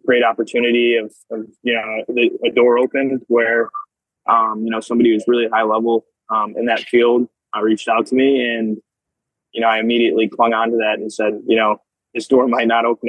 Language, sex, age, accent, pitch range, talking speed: English, male, 20-39, American, 110-120 Hz, 210 wpm